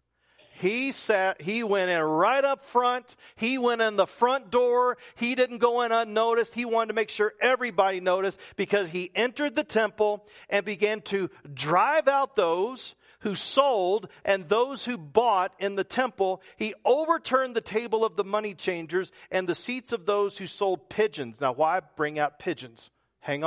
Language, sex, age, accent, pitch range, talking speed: English, male, 50-69, American, 185-245 Hz, 175 wpm